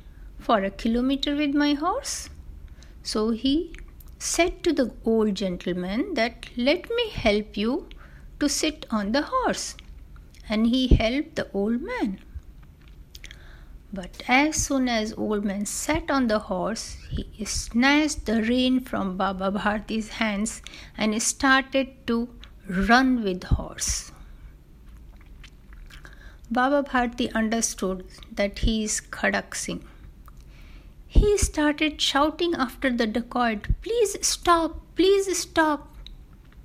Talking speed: 120 wpm